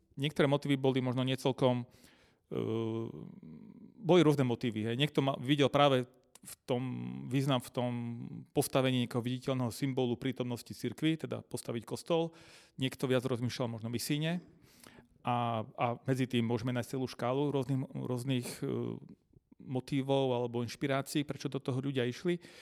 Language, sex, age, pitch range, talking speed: Slovak, male, 40-59, 125-145 Hz, 140 wpm